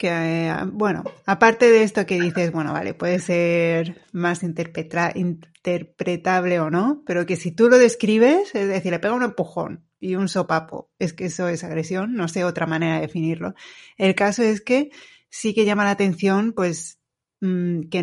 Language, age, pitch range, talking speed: Spanish, 30-49, 175-210 Hz, 175 wpm